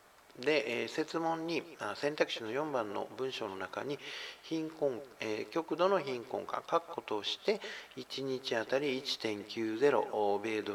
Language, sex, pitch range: Japanese, male, 115-170 Hz